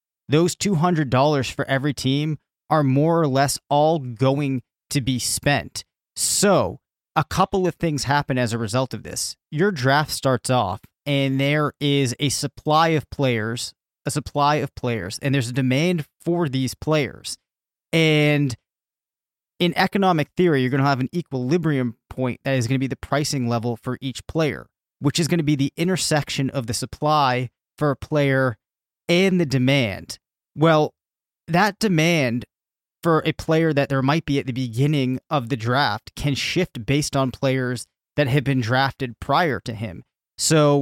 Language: English